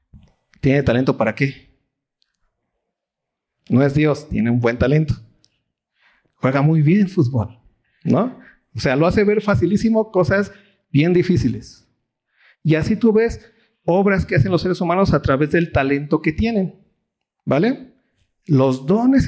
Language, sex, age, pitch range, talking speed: Spanish, male, 50-69, 140-205 Hz, 135 wpm